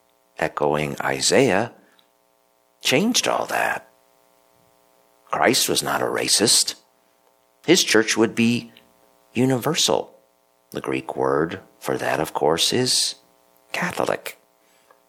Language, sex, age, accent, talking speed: English, male, 50-69, American, 95 wpm